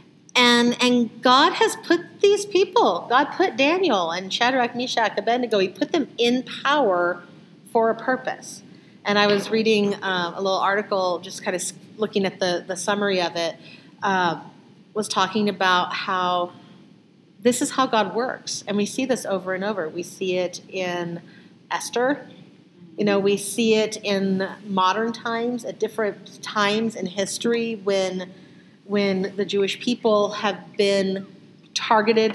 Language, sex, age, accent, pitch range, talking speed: English, female, 40-59, American, 190-225 Hz, 155 wpm